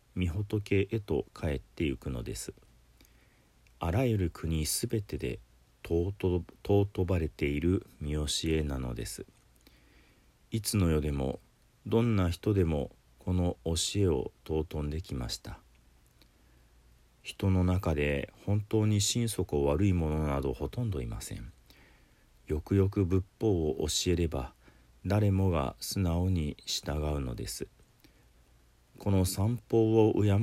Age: 40-59